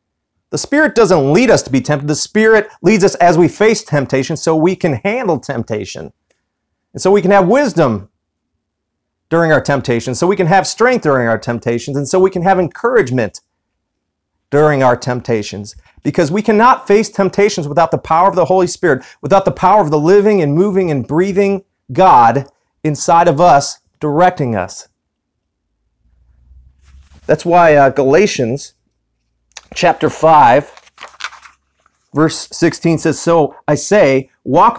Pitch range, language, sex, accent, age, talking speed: 110-180 Hz, English, male, American, 40-59, 150 wpm